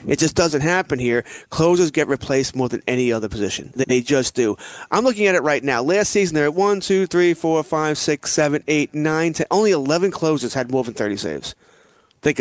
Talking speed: 220 wpm